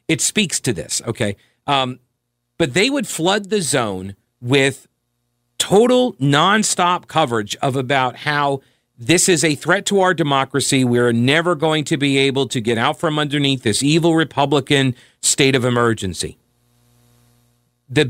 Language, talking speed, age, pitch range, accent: English, 145 wpm, 40-59, 120-165 Hz, American